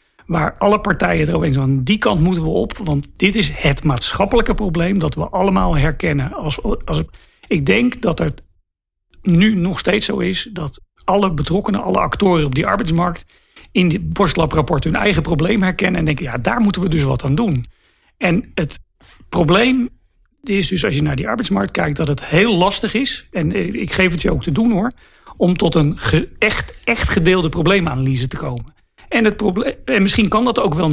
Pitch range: 145-195 Hz